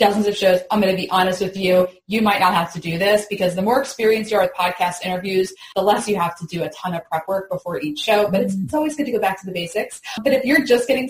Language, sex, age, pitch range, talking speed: English, female, 20-39, 185-230 Hz, 295 wpm